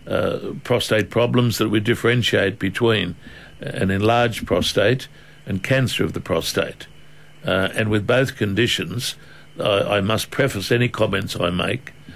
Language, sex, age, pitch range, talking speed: English, male, 60-79, 105-125 Hz, 140 wpm